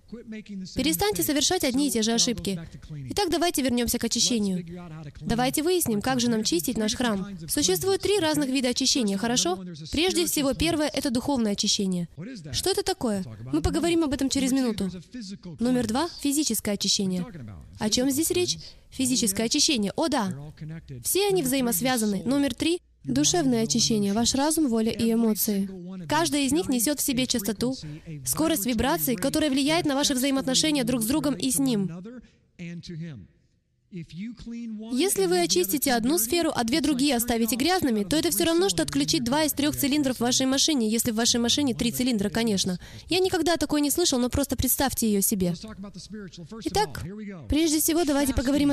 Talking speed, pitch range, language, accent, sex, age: 160 wpm, 215-300 Hz, Russian, native, female, 20-39